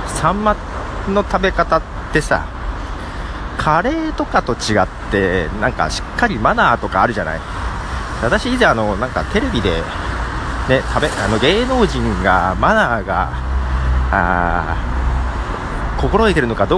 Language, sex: Japanese, male